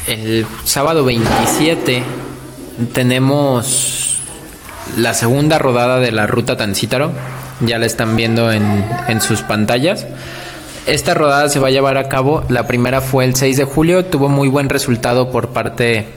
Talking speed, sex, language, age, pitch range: 150 wpm, male, Spanish, 20-39, 115-135 Hz